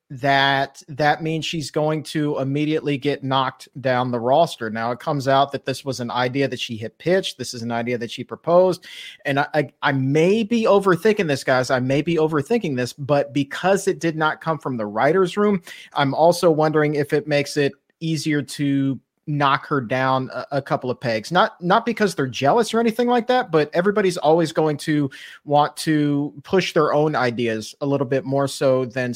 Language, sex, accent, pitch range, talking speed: English, male, American, 130-160 Hz, 200 wpm